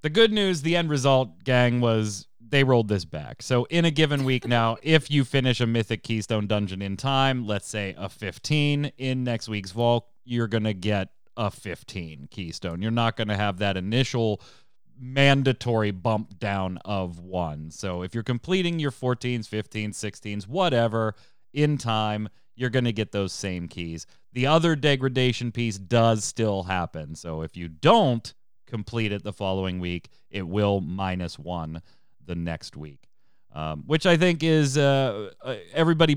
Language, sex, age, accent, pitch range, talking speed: English, male, 30-49, American, 100-130 Hz, 170 wpm